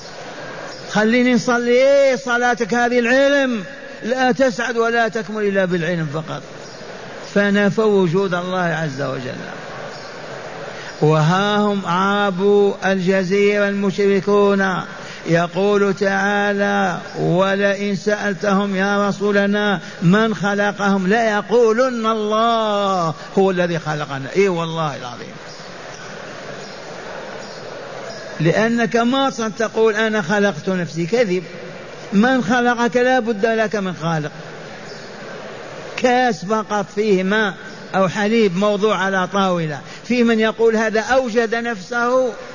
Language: Arabic